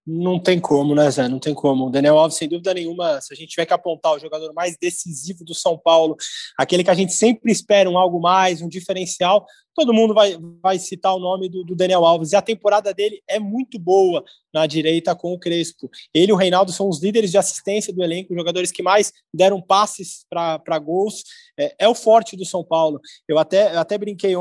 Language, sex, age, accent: Portuguese, male, 20-39, Brazilian